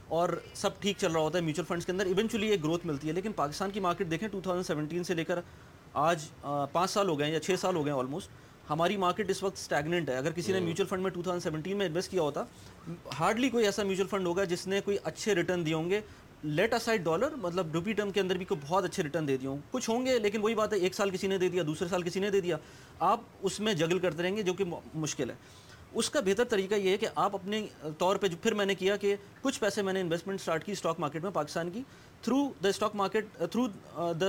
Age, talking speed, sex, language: 30-49, 260 wpm, male, Urdu